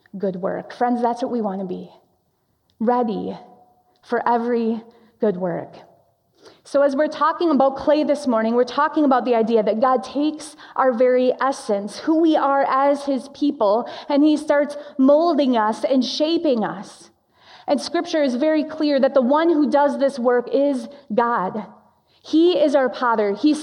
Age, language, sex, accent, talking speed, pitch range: 30-49, English, female, American, 170 wpm, 225-280 Hz